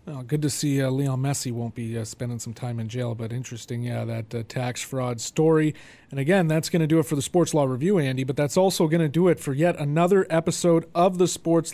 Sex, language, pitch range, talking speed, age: male, English, 130-160 Hz, 255 wpm, 30-49